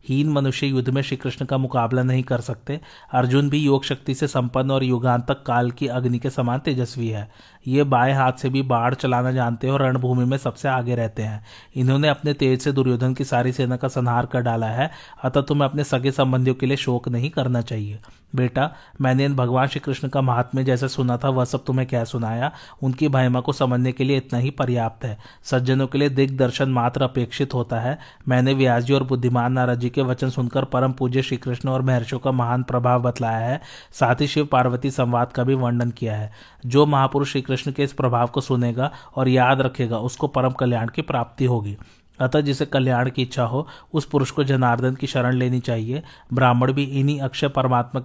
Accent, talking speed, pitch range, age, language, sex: native, 200 wpm, 125-135 Hz, 30-49, Hindi, male